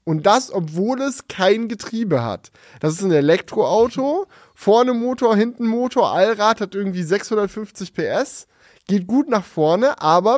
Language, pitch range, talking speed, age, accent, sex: German, 175-235 Hz, 145 wpm, 10-29, German, male